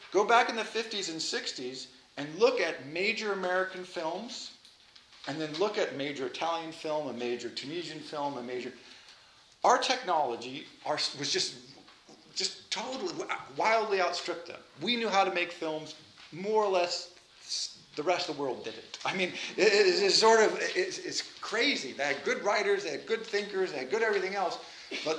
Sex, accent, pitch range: male, American, 155-215 Hz